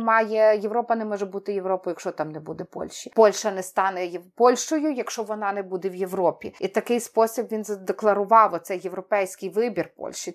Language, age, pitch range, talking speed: Ukrainian, 30-49, 195-240 Hz, 180 wpm